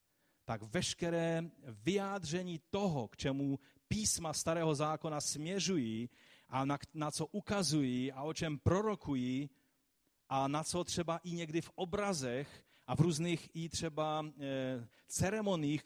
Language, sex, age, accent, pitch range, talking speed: Czech, male, 40-59, native, 120-160 Hz, 125 wpm